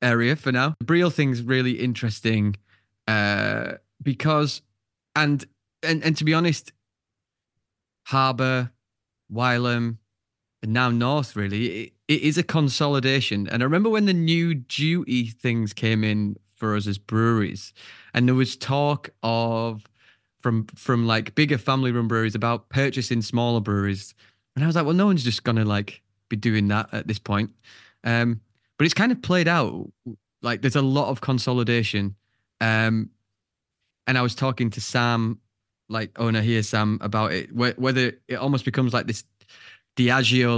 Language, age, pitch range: English, 20-39, 110-130 Hz